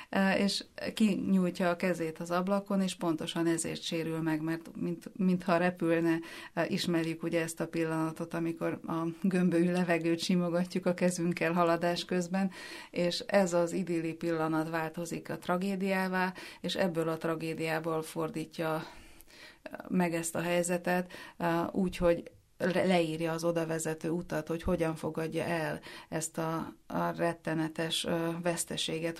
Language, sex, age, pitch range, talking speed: Hungarian, female, 30-49, 165-185 Hz, 125 wpm